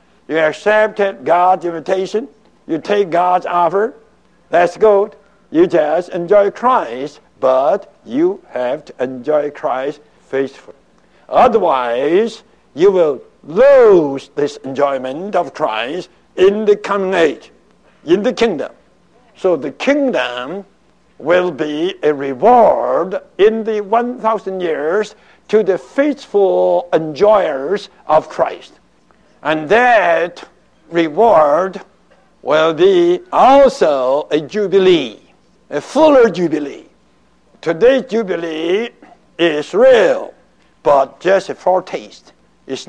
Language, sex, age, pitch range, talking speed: English, male, 60-79, 175-245 Hz, 100 wpm